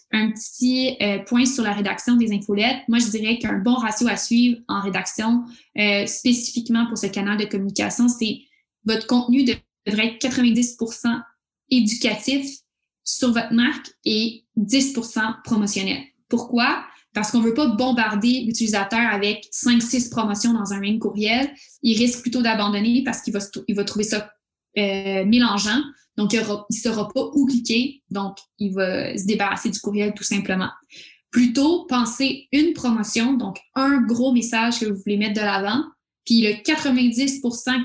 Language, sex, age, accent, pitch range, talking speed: French, female, 20-39, Canadian, 210-245 Hz, 160 wpm